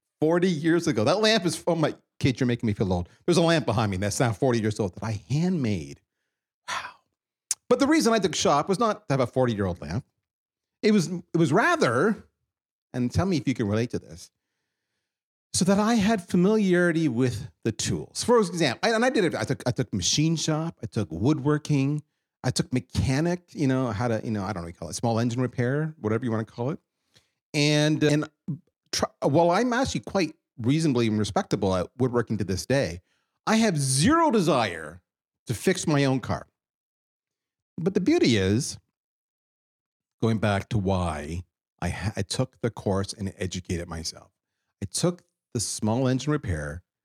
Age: 40-59